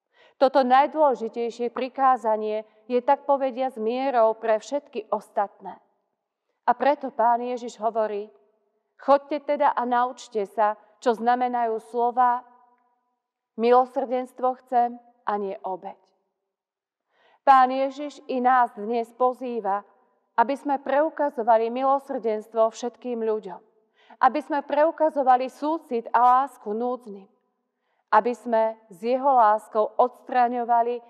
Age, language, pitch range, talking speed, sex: 40-59, Slovak, 210-255 Hz, 105 wpm, female